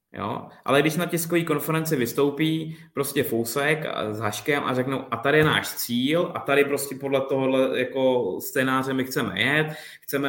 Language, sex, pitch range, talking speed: Czech, male, 115-140 Hz, 170 wpm